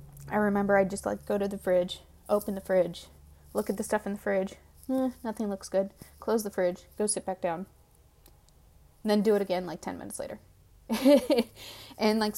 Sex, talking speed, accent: female, 200 wpm, American